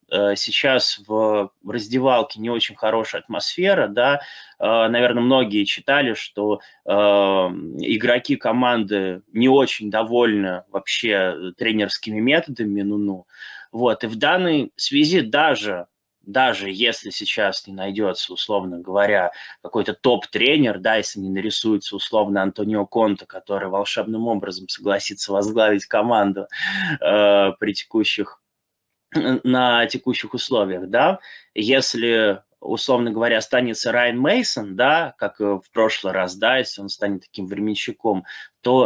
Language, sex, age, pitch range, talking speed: Russian, male, 20-39, 100-120 Hz, 115 wpm